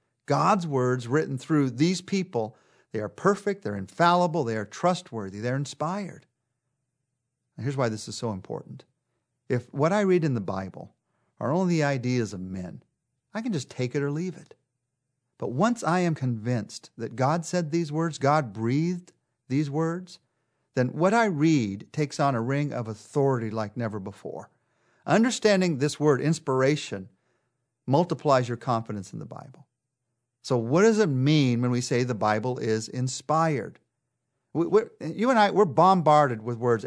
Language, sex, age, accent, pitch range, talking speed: English, male, 50-69, American, 120-165 Hz, 160 wpm